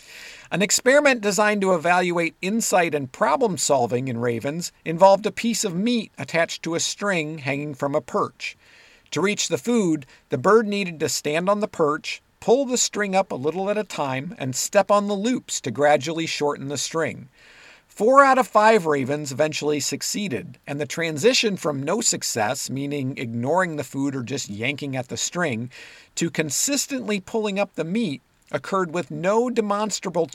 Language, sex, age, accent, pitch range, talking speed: English, male, 50-69, American, 145-205 Hz, 175 wpm